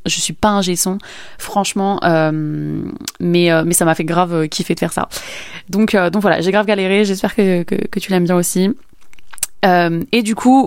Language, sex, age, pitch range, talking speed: French, female, 20-39, 175-210 Hz, 210 wpm